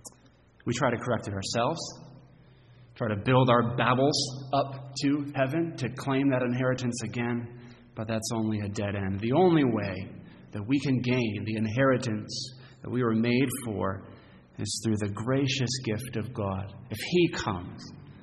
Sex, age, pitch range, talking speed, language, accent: male, 30-49, 110-135 Hz, 160 wpm, English, American